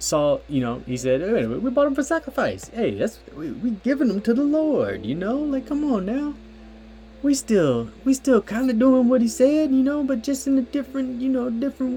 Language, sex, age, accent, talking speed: English, male, 20-39, American, 230 wpm